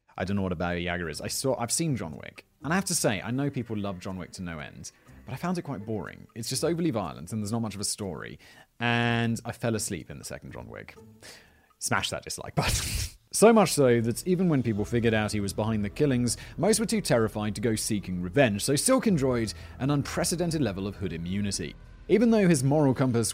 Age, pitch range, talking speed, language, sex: 30-49, 100-140 Hz, 240 wpm, English, male